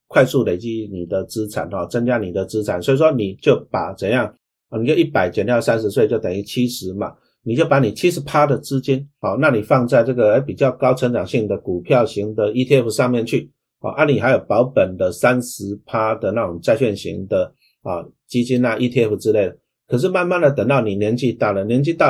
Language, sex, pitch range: Chinese, male, 105-135 Hz